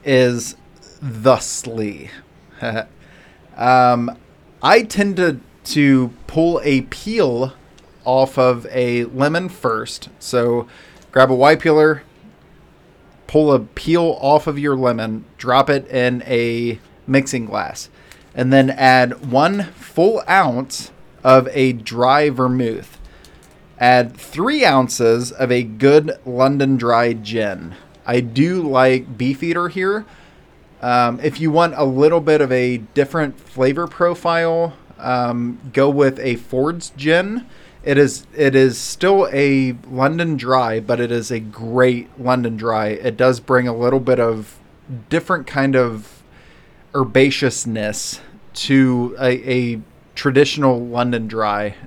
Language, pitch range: English, 120-145 Hz